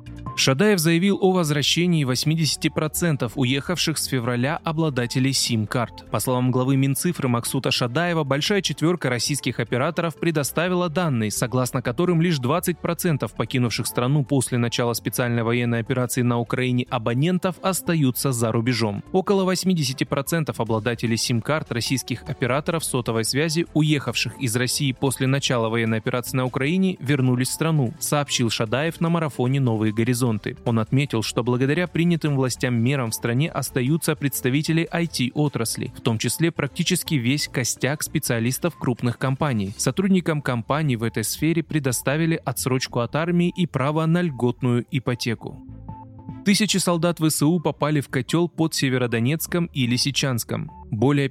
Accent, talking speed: native, 130 wpm